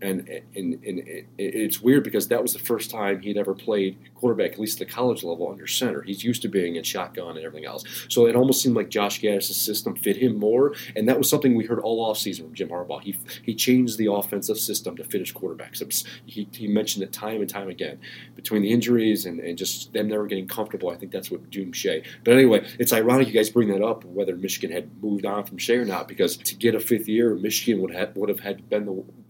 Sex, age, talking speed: male, 30-49, 250 wpm